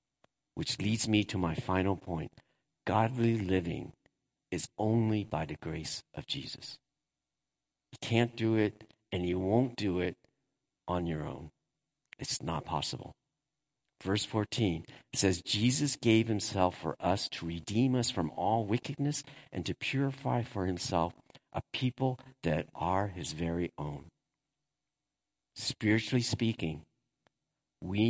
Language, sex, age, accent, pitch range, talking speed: English, male, 50-69, American, 90-130 Hz, 130 wpm